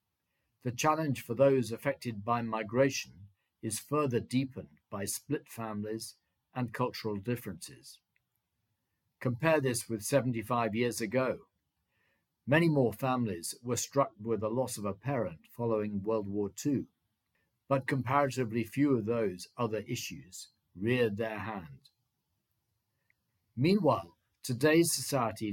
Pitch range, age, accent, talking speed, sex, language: 105-135 Hz, 50-69, British, 120 wpm, male, English